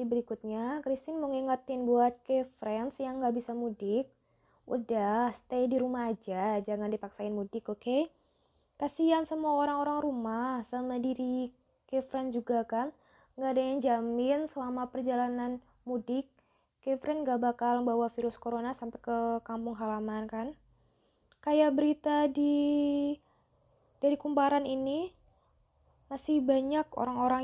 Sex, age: female, 20-39